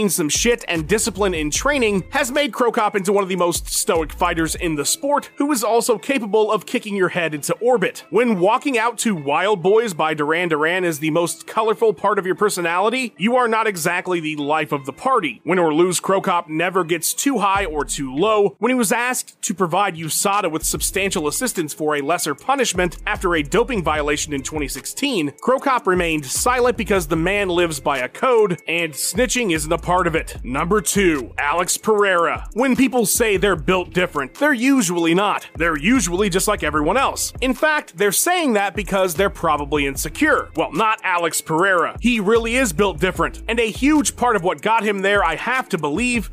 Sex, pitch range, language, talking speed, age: male, 170-235 Hz, English, 200 wpm, 30-49